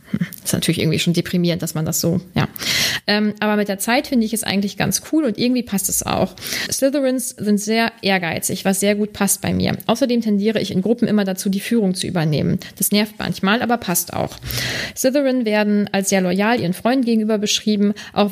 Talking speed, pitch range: 205 wpm, 190-225 Hz